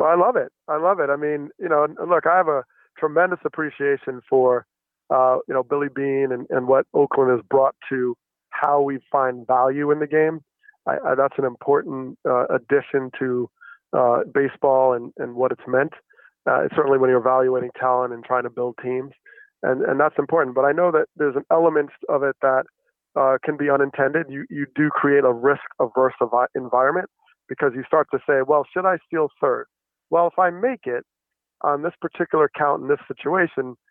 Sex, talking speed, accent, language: male, 195 wpm, American, English